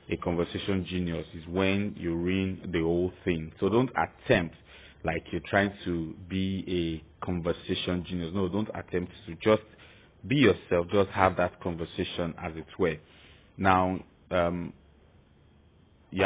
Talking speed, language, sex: 135 wpm, English, male